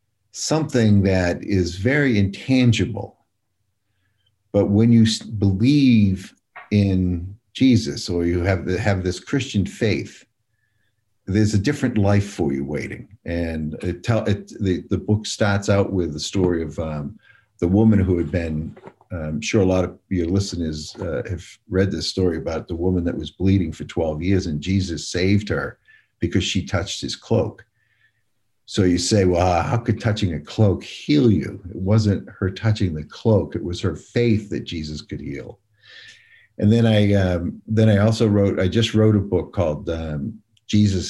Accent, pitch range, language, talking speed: American, 90-110 Hz, English, 170 wpm